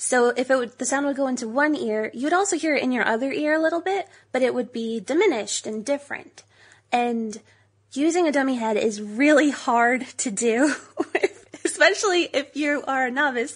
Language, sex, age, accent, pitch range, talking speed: English, female, 20-39, American, 220-290 Hz, 200 wpm